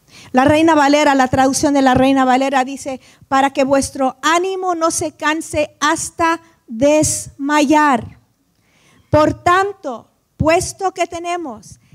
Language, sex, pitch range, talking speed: Spanish, female, 270-330 Hz, 120 wpm